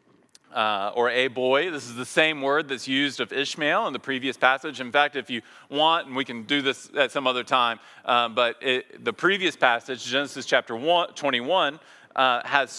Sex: male